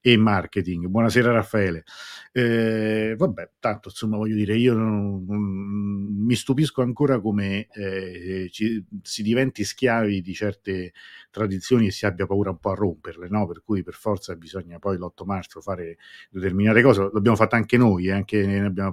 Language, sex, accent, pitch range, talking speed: Italian, male, native, 95-110 Hz, 170 wpm